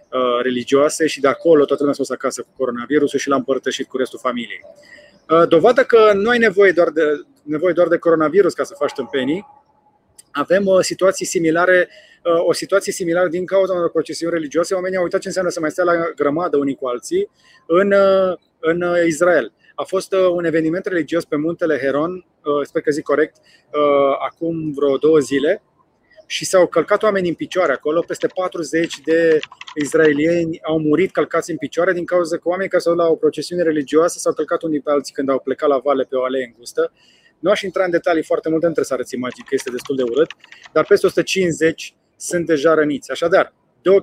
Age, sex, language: 30-49, male, Romanian